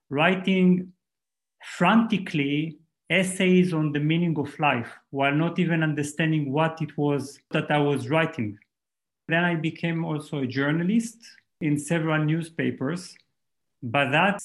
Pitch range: 145-175 Hz